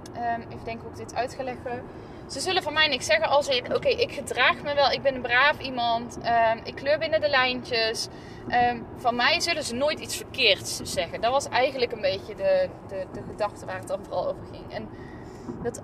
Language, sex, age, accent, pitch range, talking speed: Dutch, female, 20-39, Dutch, 220-290 Hz, 225 wpm